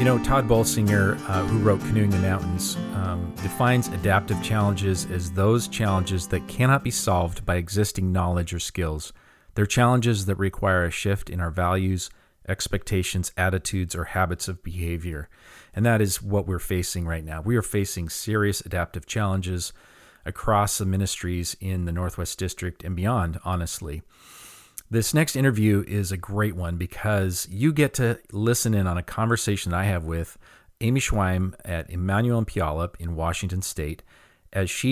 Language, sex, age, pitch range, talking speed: English, male, 40-59, 90-110 Hz, 160 wpm